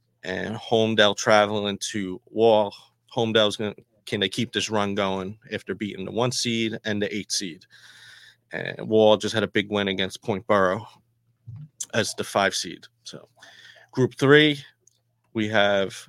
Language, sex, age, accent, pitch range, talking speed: English, male, 30-49, American, 105-120 Hz, 155 wpm